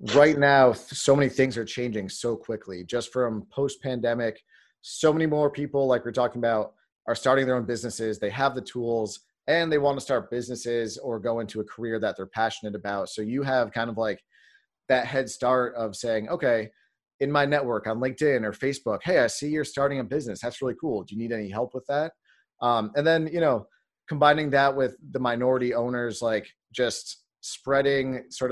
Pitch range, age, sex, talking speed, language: 110-135 Hz, 30-49, male, 200 wpm, English